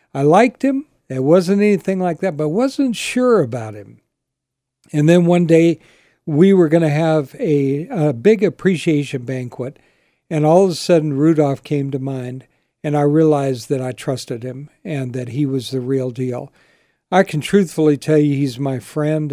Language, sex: English, male